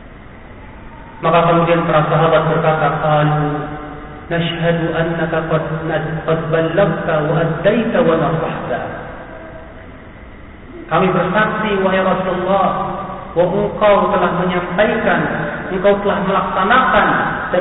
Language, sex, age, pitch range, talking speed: Malay, male, 40-59, 140-185 Hz, 90 wpm